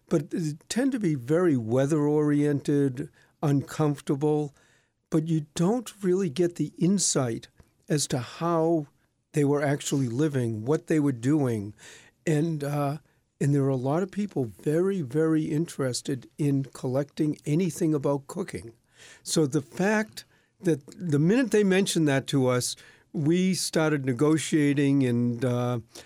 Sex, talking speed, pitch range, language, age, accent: male, 135 wpm, 135-165 Hz, English, 60-79, American